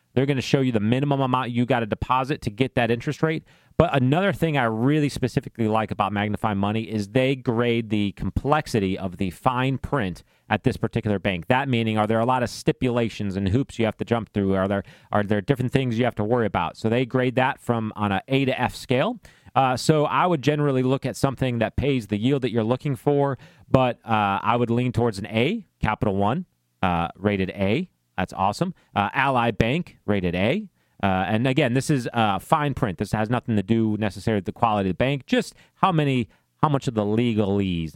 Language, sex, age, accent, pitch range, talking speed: English, male, 30-49, American, 105-135 Hz, 225 wpm